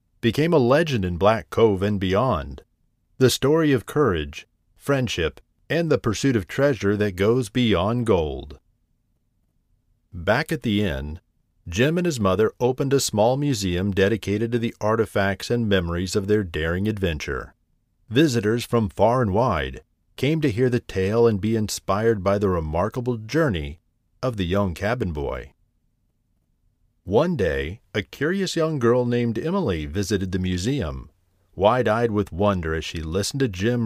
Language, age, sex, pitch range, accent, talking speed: English, 40-59, male, 95-125 Hz, American, 150 wpm